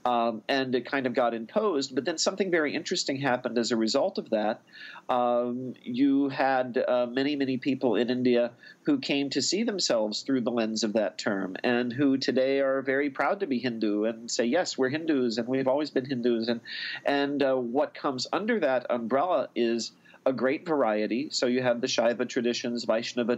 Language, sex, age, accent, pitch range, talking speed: English, male, 40-59, American, 120-140 Hz, 195 wpm